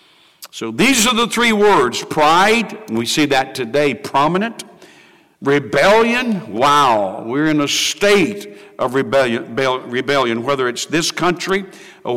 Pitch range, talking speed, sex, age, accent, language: 135-190 Hz, 135 wpm, male, 60-79, American, English